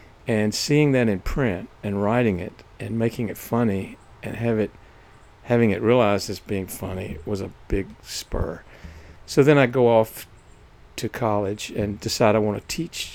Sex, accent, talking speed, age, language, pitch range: male, American, 170 wpm, 60-79, English, 100-120 Hz